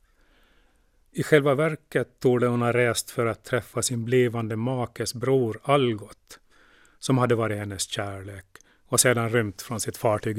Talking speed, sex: 150 wpm, male